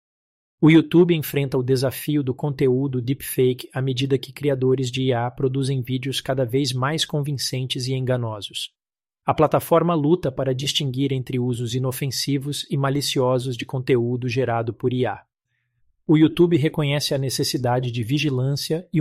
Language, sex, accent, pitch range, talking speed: Portuguese, male, Brazilian, 125-140 Hz, 140 wpm